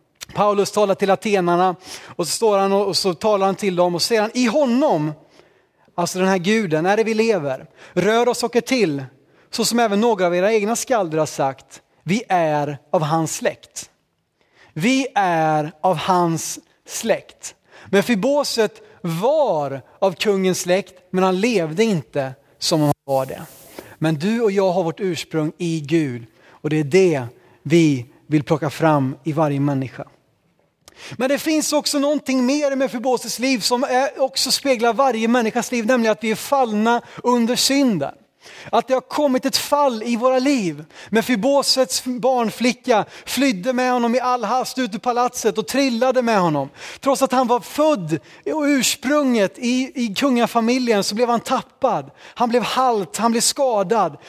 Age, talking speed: 30-49, 170 wpm